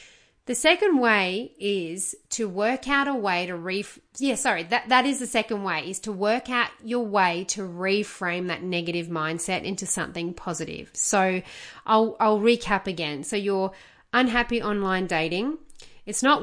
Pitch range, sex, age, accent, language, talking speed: 180-245 Hz, female, 30-49, Australian, English, 165 wpm